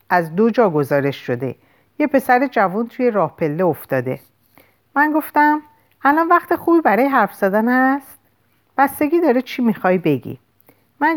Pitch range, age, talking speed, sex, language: 155-255 Hz, 50-69, 145 wpm, female, Persian